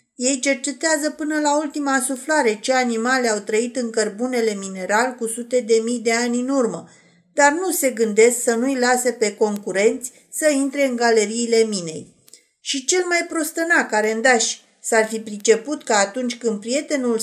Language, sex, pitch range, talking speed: Romanian, female, 220-285 Hz, 165 wpm